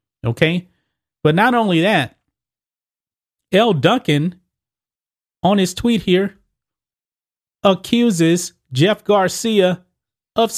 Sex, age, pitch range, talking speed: male, 30-49, 135-185 Hz, 85 wpm